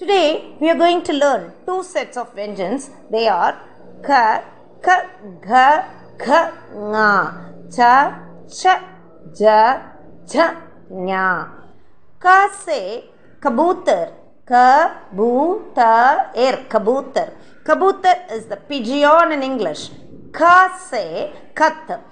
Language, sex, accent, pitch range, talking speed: Tamil, female, native, 230-325 Hz, 105 wpm